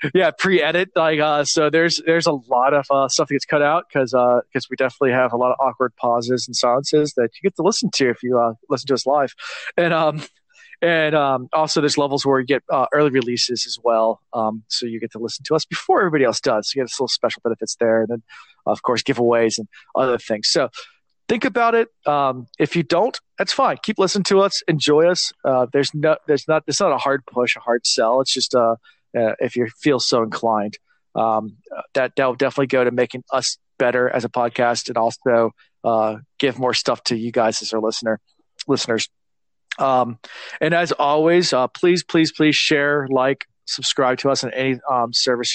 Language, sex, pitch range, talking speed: English, male, 120-155 Hz, 220 wpm